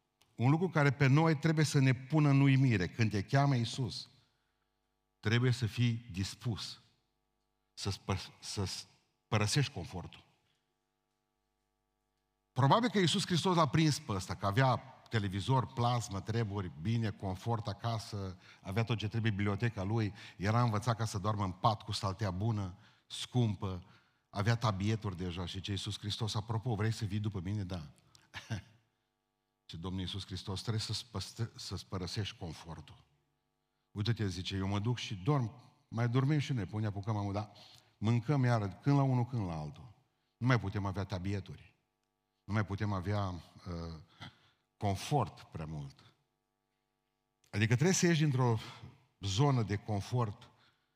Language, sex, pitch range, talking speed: Romanian, male, 100-125 Hz, 145 wpm